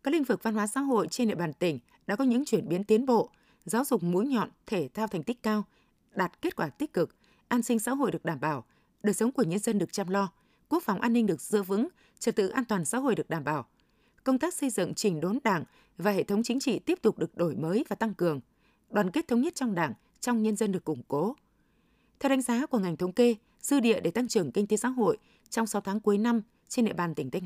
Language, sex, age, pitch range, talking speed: Vietnamese, female, 20-39, 190-240 Hz, 265 wpm